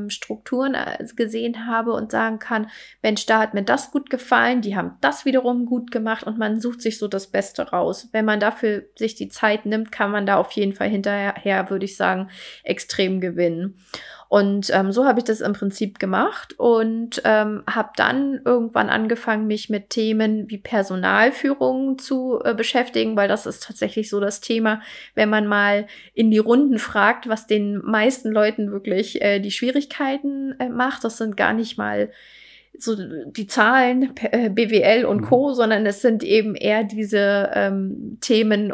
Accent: German